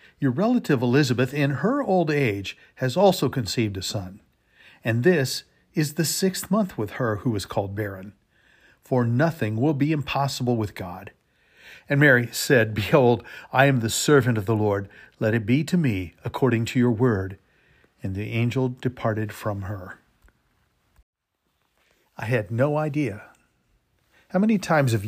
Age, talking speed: 50-69, 155 wpm